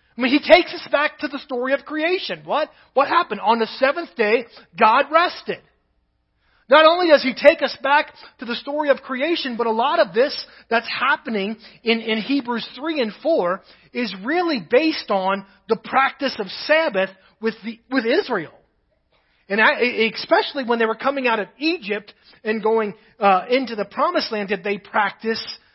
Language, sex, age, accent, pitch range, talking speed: English, male, 30-49, American, 190-270 Hz, 180 wpm